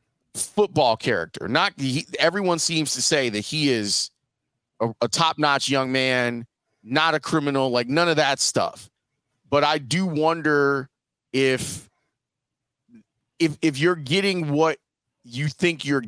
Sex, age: male, 30-49